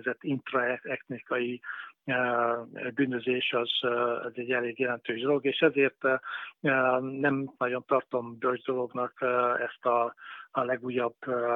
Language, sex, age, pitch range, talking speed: Hungarian, male, 50-69, 120-130 Hz, 110 wpm